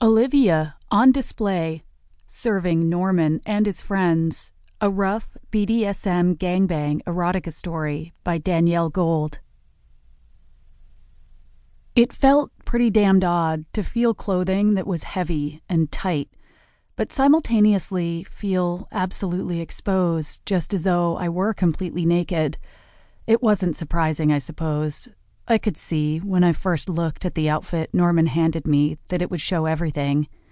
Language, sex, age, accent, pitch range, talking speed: English, female, 30-49, American, 155-195 Hz, 130 wpm